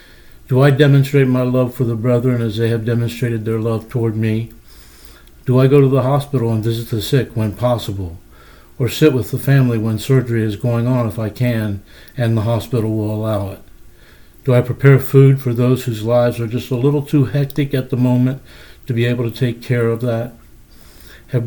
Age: 60-79